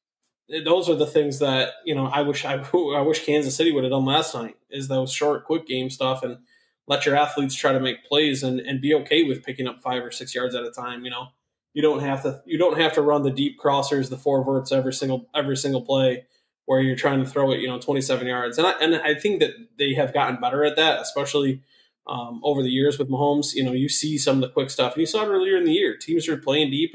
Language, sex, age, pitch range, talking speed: English, male, 20-39, 130-150 Hz, 265 wpm